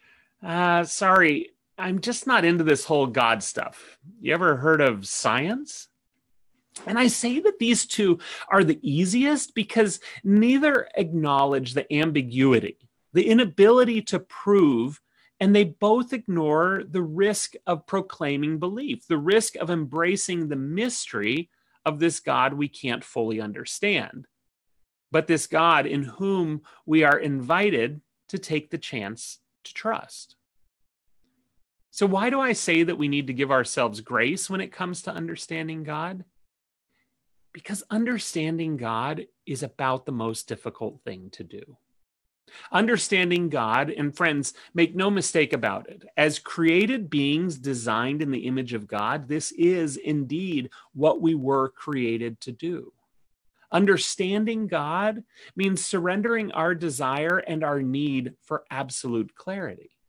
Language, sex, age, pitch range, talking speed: English, male, 30-49, 140-195 Hz, 135 wpm